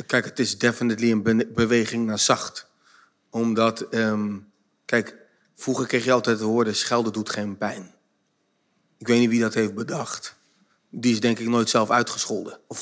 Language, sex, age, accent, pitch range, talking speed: Dutch, male, 40-59, Dutch, 115-130 Hz, 175 wpm